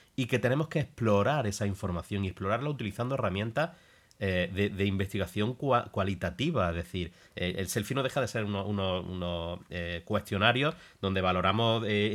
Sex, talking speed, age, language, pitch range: male, 165 wpm, 30-49, Spanish, 95-120 Hz